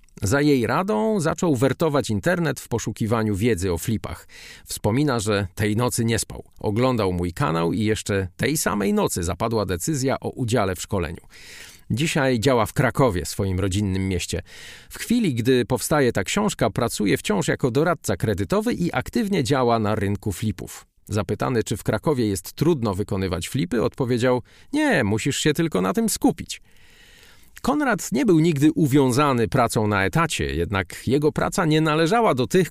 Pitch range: 105-155 Hz